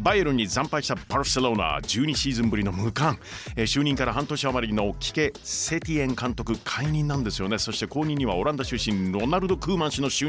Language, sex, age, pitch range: Japanese, male, 40-59, 110-150 Hz